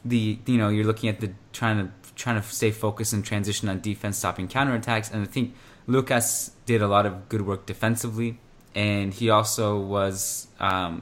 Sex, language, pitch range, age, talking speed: male, English, 100-115 Hz, 20-39, 190 wpm